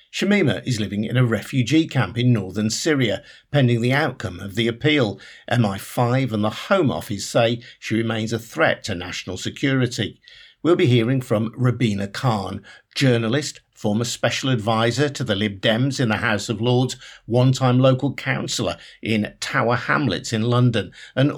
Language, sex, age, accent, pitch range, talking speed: English, male, 50-69, British, 110-135 Hz, 160 wpm